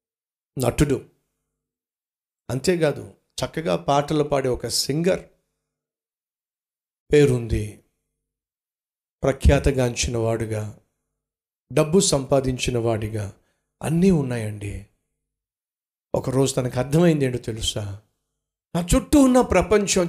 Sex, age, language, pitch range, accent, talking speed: male, 50-69, Telugu, 110-185 Hz, native, 70 wpm